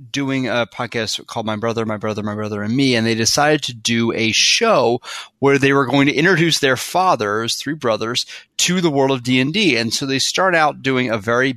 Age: 30-49